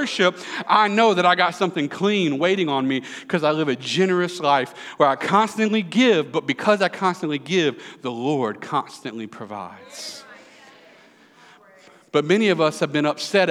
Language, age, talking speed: English, 40-59, 160 wpm